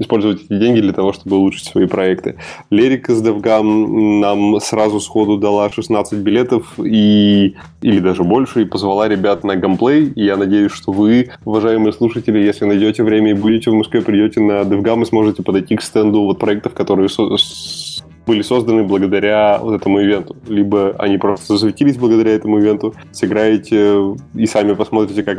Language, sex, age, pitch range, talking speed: Russian, male, 20-39, 100-110 Hz, 165 wpm